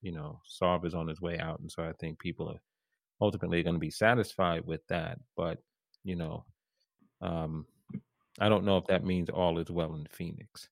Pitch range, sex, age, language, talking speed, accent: 80-100 Hz, male, 30-49, English, 200 wpm, American